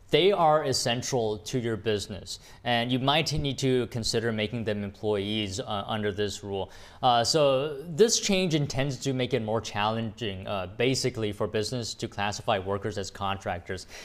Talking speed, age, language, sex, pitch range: 160 wpm, 20-39, English, male, 115-145 Hz